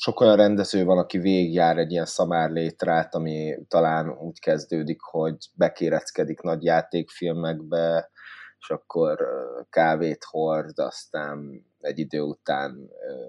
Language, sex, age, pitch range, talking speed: Hungarian, male, 20-39, 80-95 Hz, 120 wpm